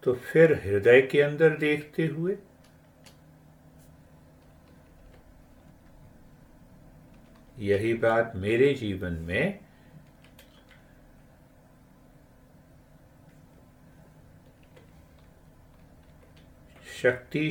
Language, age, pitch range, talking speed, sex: Hindi, 60-79, 85-135 Hz, 45 wpm, male